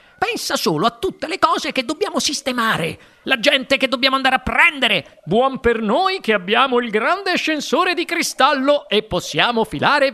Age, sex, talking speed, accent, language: 50-69, male, 170 wpm, native, Italian